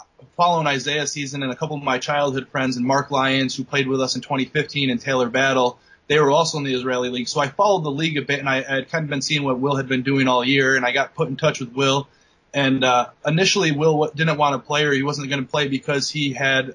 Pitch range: 130-145 Hz